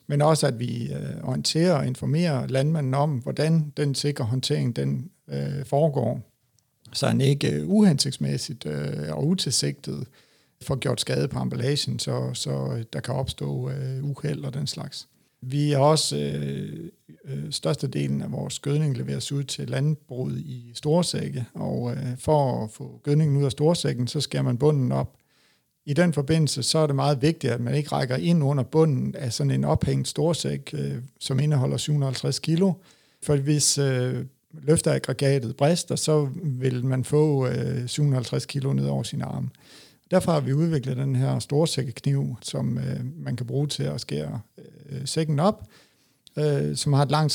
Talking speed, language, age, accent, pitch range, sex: 165 wpm, Danish, 60-79, native, 125-150 Hz, male